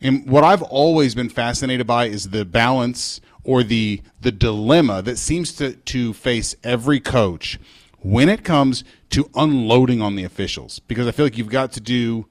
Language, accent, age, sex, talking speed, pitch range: English, American, 40-59, male, 180 wpm, 100-135 Hz